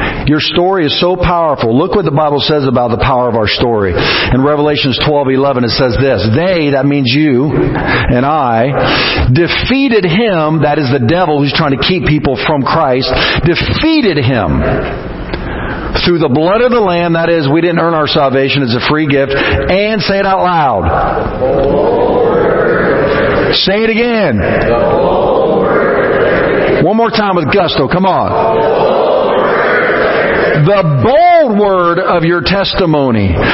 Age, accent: 50-69, American